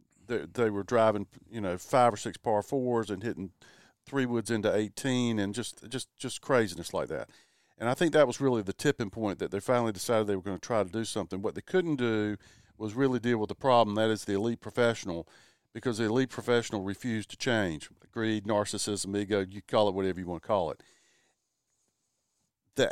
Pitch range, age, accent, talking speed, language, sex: 110-135 Hz, 50-69, American, 205 wpm, English, male